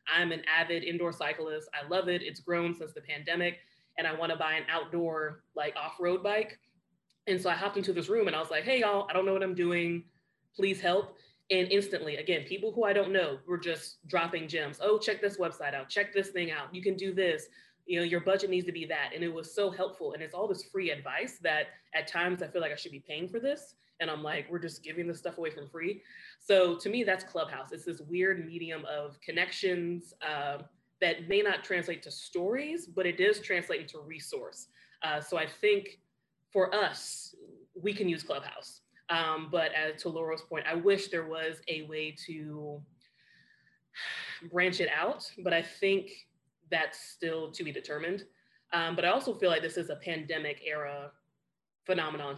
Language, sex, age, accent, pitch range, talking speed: English, female, 20-39, American, 155-190 Hz, 205 wpm